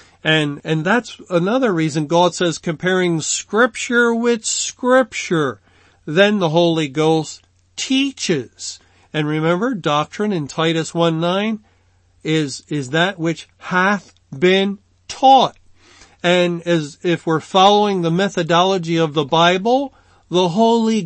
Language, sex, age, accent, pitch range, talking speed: English, male, 50-69, American, 155-190 Hz, 115 wpm